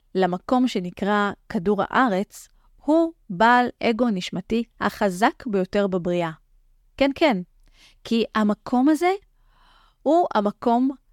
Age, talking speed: 30-49, 95 wpm